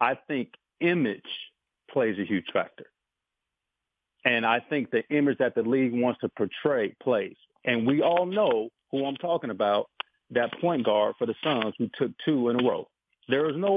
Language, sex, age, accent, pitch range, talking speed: English, male, 50-69, American, 115-155 Hz, 185 wpm